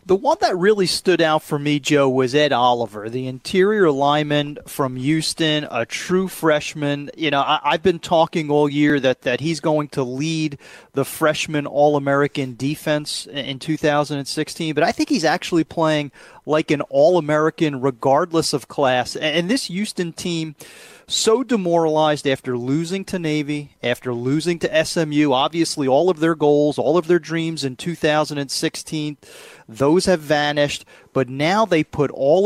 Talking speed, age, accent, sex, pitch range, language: 160 wpm, 30-49, American, male, 140-170 Hz, English